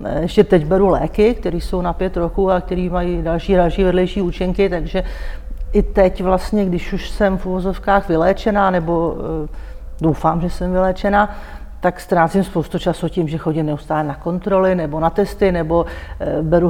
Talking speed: 175 wpm